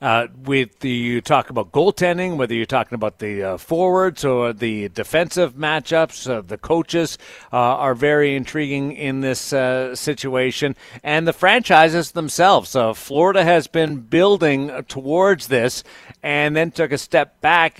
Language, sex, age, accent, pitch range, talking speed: English, male, 50-69, American, 125-155 Hz, 155 wpm